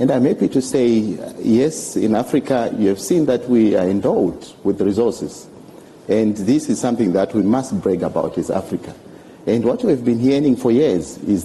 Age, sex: 50-69, male